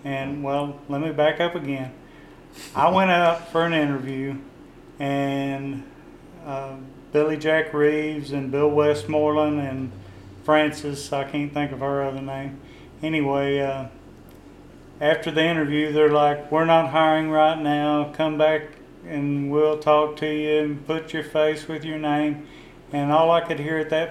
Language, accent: English, American